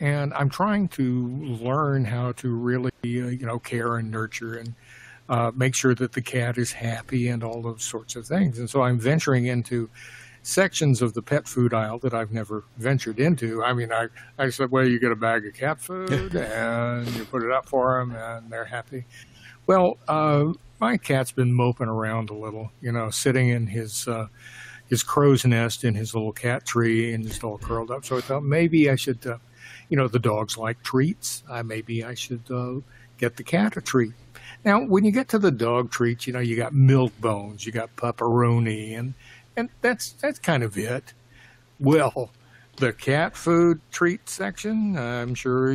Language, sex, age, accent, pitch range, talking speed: English, male, 60-79, American, 115-135 Hz, 195 wpm